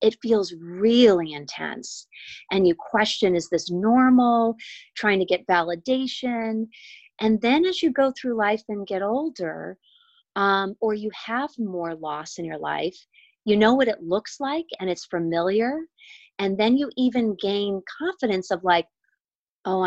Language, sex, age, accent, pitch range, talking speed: English, female, 30-49, American, 170-220 Hz, 155 wpm